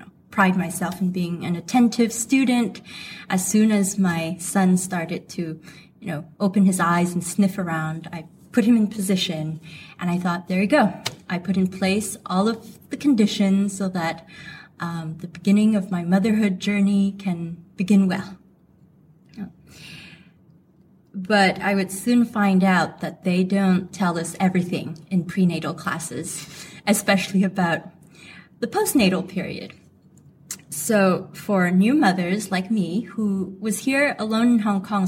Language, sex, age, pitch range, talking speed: English, female, 20-39, 175-210 Hz, 145 wpm